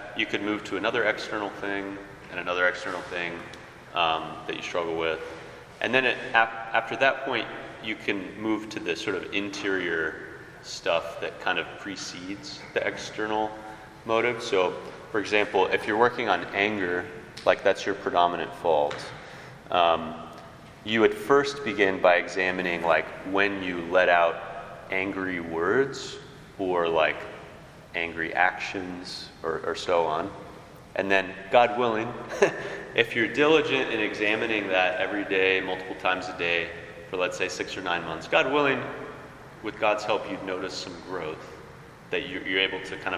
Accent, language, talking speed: American, English, 155 wpm